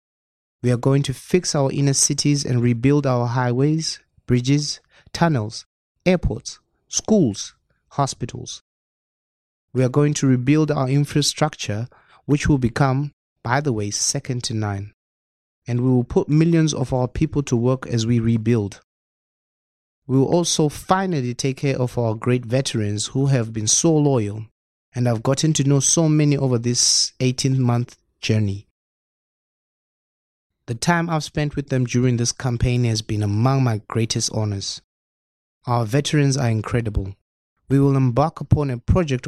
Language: Chinese